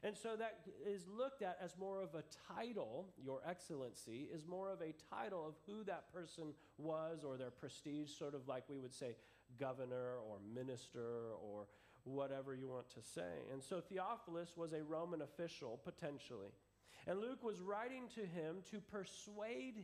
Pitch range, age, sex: 125-180 Hz, 40-59, male